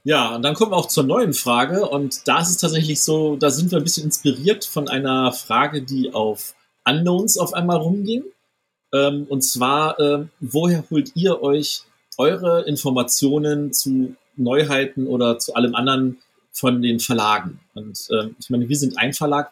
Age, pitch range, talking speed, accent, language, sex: 30-49, 120-150 Hz, 165 wpm, German, German, male